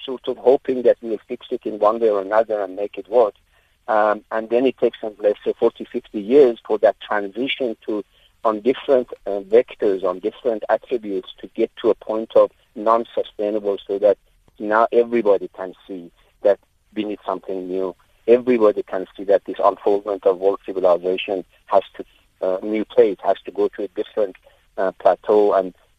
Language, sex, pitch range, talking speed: English, male, 95-120 Hz, 185 wpm